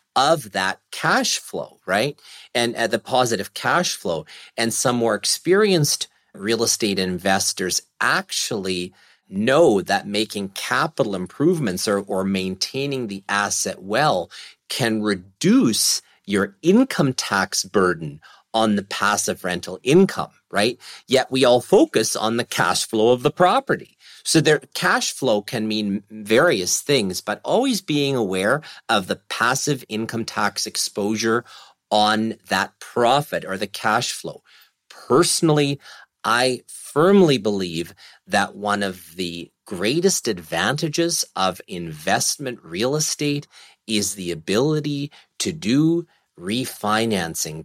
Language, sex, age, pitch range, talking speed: English, male, 40-59, 95-140 Hz, 125 wpm